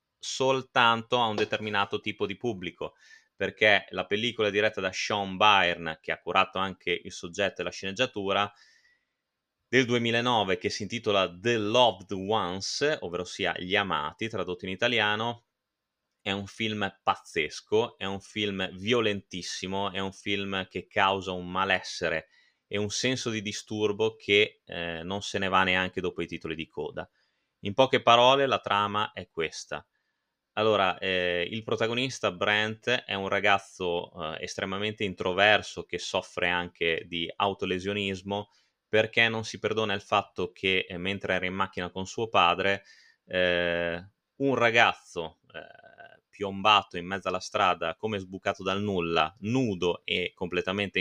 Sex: male